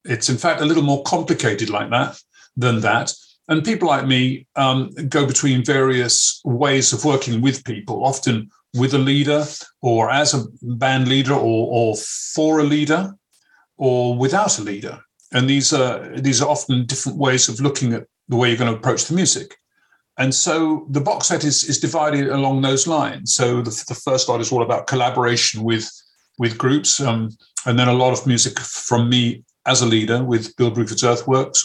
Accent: British